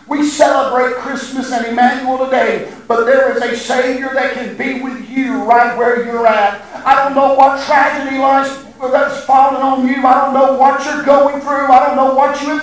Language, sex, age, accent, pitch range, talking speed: English, male, 50-69, American, 260-310 Hz, 200 wpm